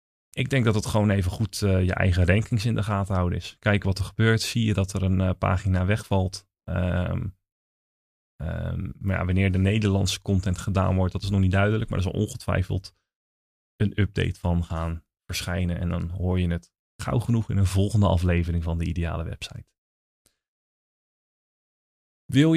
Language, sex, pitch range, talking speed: Dutch, male, 95-115 Hz, 170 wpm